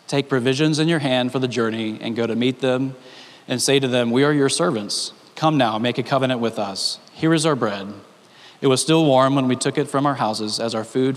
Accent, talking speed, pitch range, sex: American, 245 wpm, 115-140 Hz, male